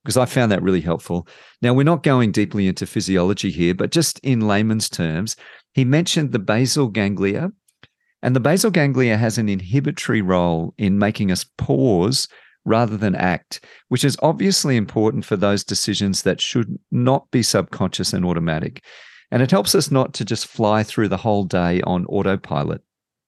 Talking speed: 175 wpm